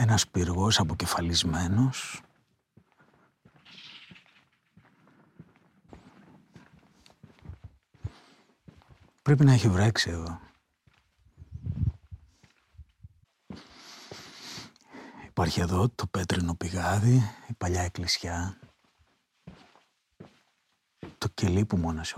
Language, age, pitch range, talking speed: Greek, 50-69, 90-115 Hz, 55 wpm